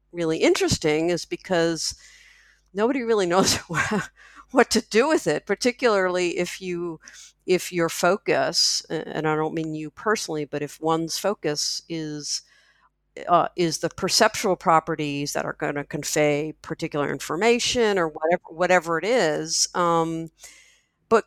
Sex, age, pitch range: female, 50-69, 155-190 Hz